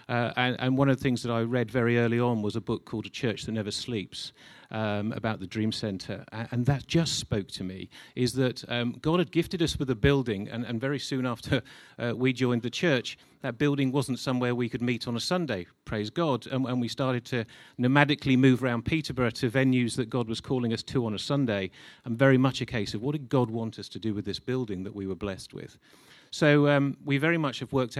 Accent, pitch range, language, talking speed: British, 110-135 Hz, English, 240 wpm